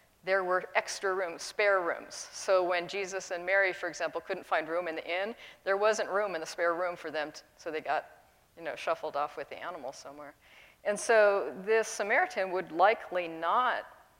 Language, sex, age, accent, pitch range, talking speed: English, female, 50-69, American, 175-220 Hz, 200 wpm